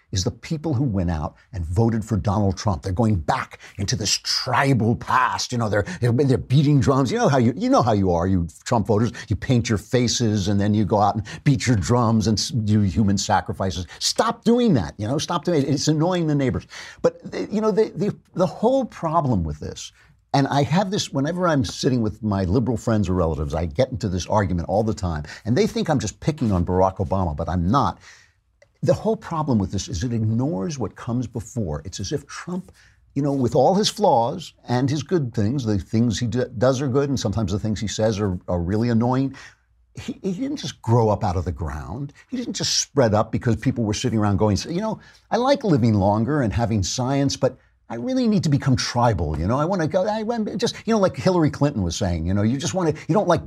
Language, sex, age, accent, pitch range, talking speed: English, male, 50-69, American, 105-160 Hz, 235 wpm